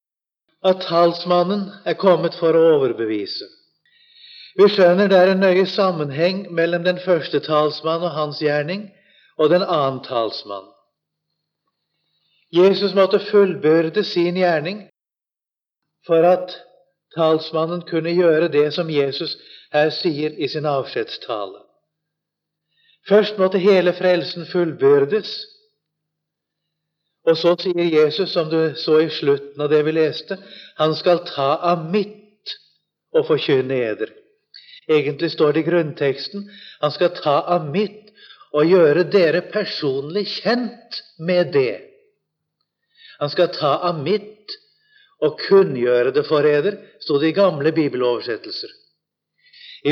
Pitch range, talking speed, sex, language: 155-205 Hz, 120 wpm, male, English